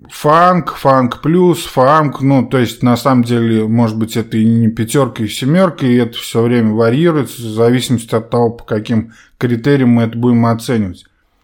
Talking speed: 180 wpm